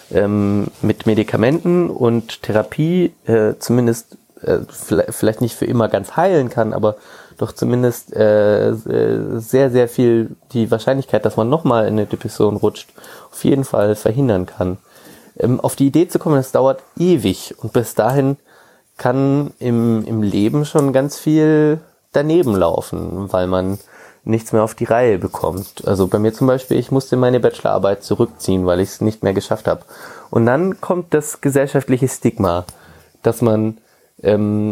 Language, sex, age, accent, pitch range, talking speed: German, male, 20-39, German, 105-135 Hz, 155 wpm